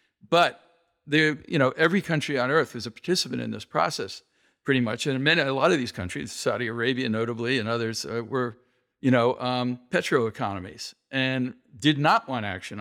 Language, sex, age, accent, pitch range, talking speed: English, male, 60-79, American, 120-145 Hz, 185 wpm